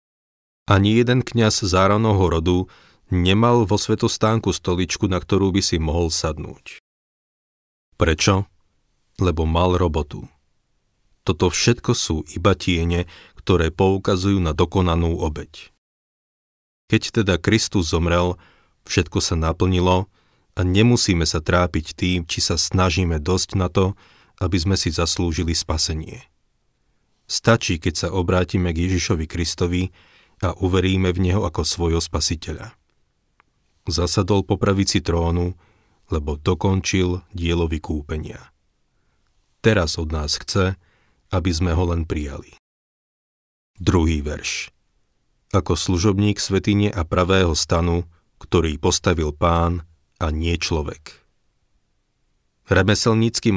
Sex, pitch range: male, 85-100 Hz